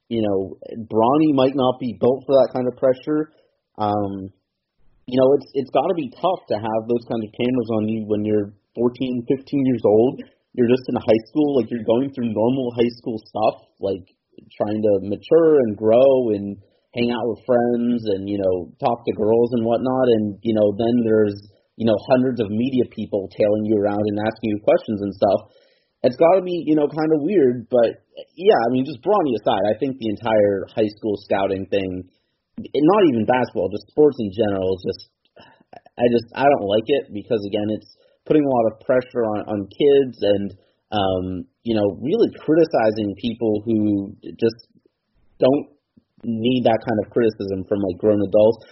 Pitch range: 105-125 Hz